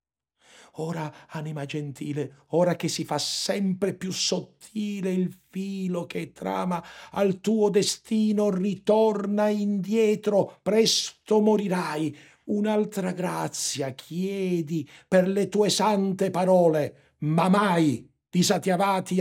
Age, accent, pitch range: 60-79, native, 115-185 Hz